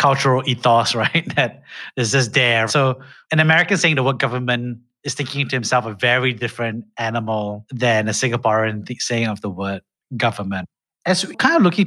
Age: 30-49